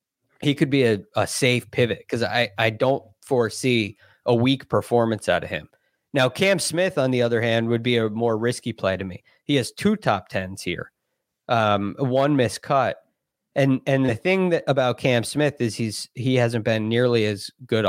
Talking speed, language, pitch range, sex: 195 wpm, English, 110-140 Hz, male